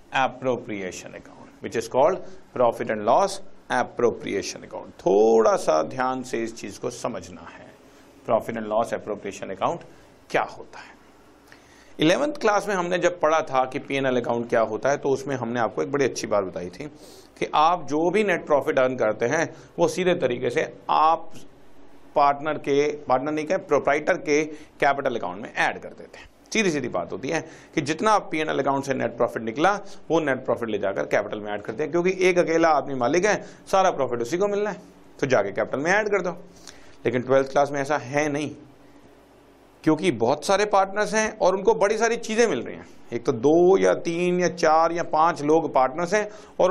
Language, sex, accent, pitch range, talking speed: Hindi, male, native, 140-205 Hz, 185 wpm